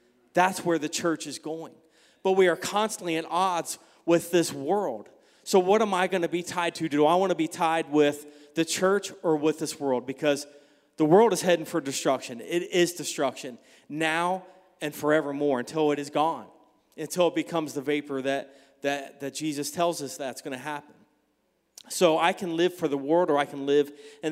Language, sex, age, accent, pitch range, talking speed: English, male, 30-49, American, 150-185 Hz, 195 wpm